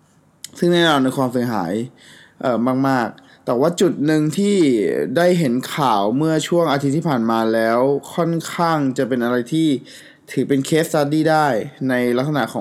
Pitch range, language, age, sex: 125-160 Hz, Thai, 20-39, male